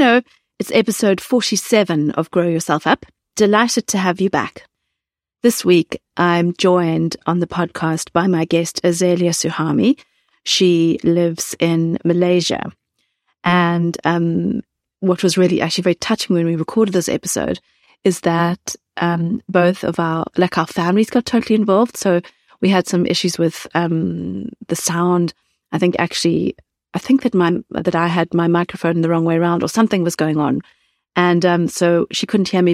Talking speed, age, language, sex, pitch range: 165 wpm, 30-49, English, female, 165-190 Hz